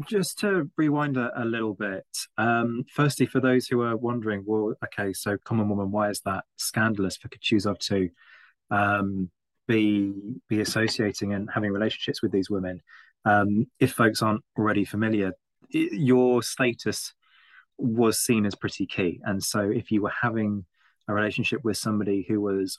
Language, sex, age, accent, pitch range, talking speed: English, male, 20-39, British, 100-115 Hz, 165 wpm